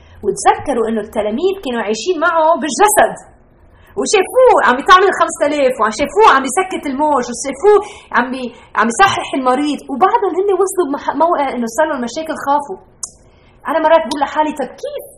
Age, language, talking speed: 20-39, Arabic, 135 wpm